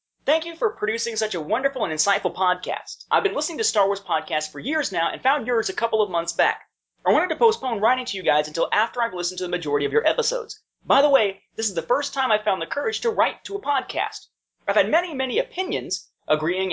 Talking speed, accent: 250 wpm, American